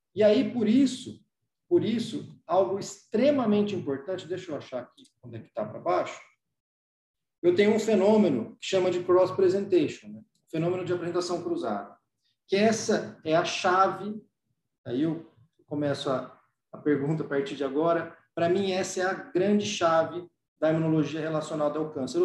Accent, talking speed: Brazilian, 155 wpm